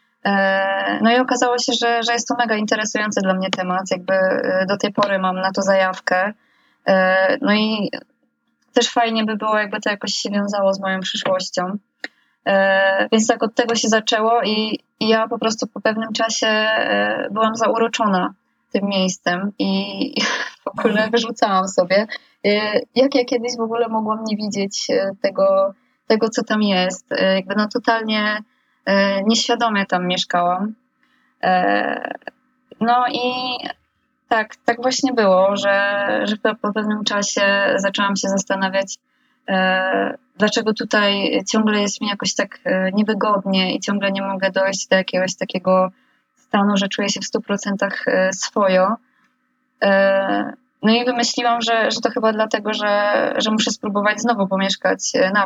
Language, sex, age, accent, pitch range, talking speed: Polish, female, 20-39, native, 195-235 Hz, 140 wpm